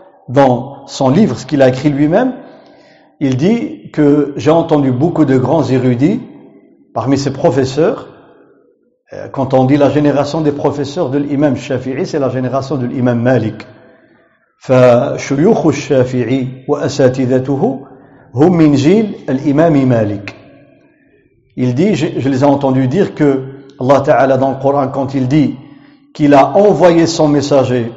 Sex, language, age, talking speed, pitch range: male, French, 50-69, 120 wpm, 130-160 Hz